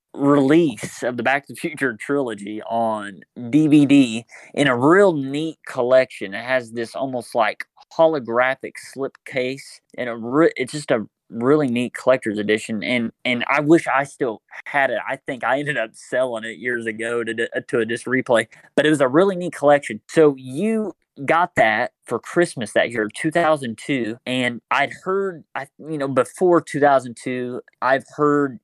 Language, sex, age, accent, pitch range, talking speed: English, male, 30-49, American, 115-145 Hz, 180 wpm